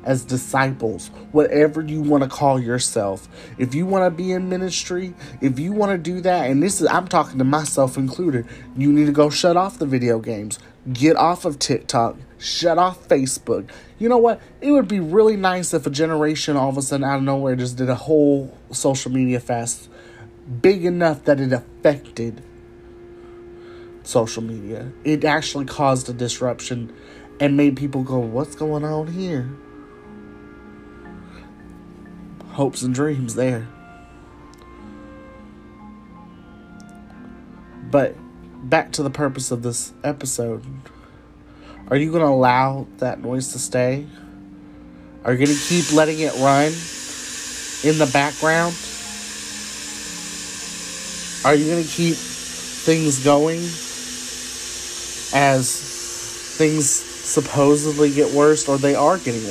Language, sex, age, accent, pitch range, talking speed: English, male, 30-49, American, 115-155 Hz, 140 wpm